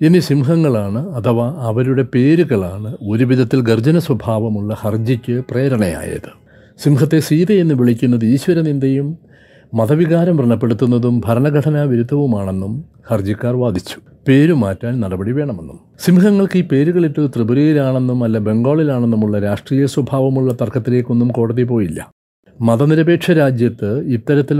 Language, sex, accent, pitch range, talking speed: Malayalam, male, native, 115-145 Hz, 90 wpm